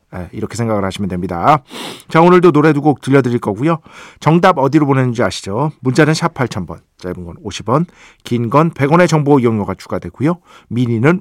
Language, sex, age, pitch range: Korean, male, 50-69, 105-155 Hz